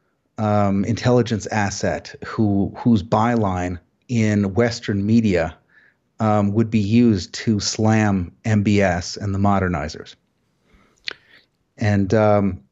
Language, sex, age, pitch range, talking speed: English, male, 30-49, 100-115 Hz, 95 wpm